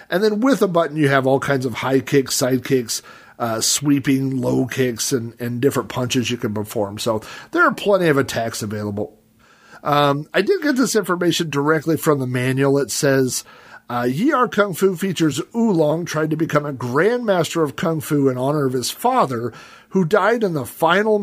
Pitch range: 125-165 Hz